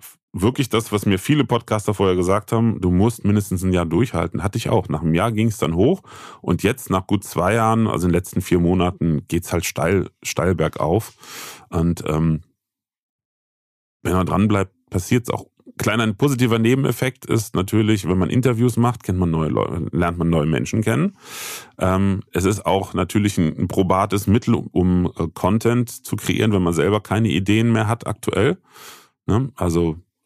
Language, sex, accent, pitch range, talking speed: German, male, German, 90-115 Hz, 185 wpm